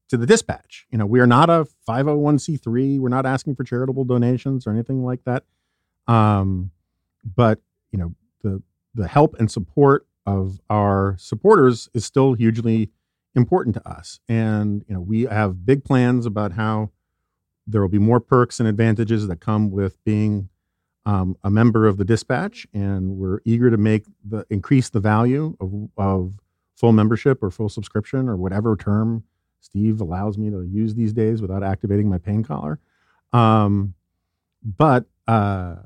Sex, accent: male, American